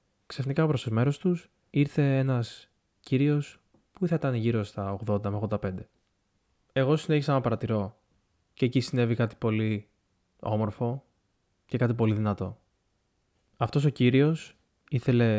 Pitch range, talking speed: 105-125 Hz, 135 wpm